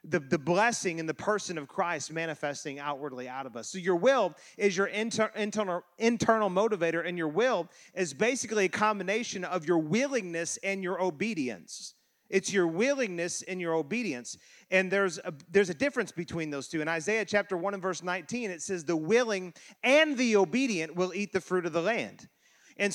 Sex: male